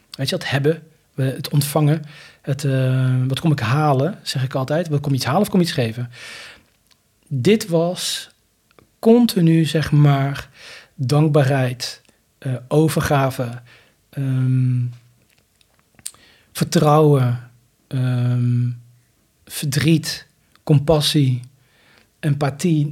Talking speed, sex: 105 wpm, male